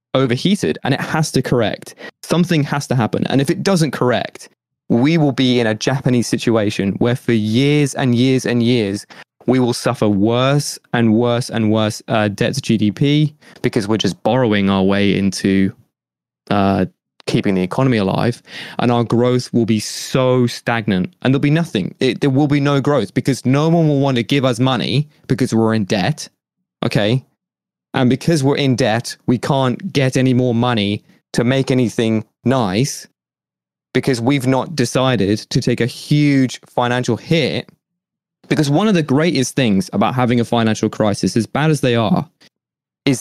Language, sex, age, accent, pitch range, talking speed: English, male, 20-39, British, 115-140 Hz, 175 wpm